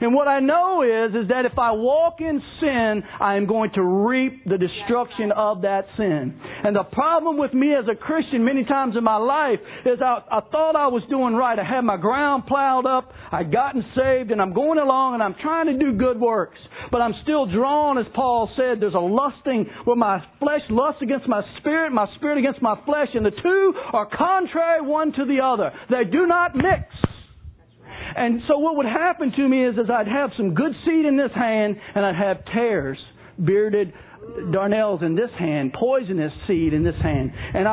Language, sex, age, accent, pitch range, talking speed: English, male, 50-69, American, 210-275 Hz, 210 wpm